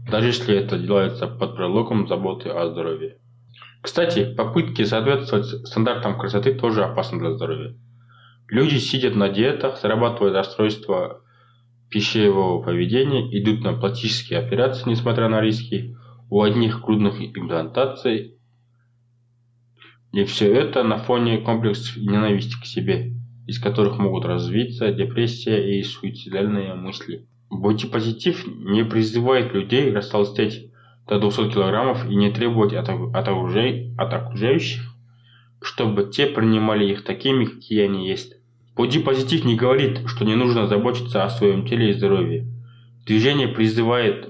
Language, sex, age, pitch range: Russian, male, 20-39, 105-125 Hz